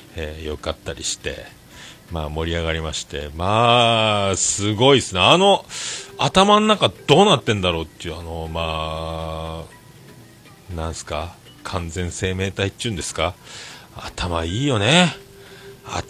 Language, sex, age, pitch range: Japanese, male, 40-59, 85-135 Hz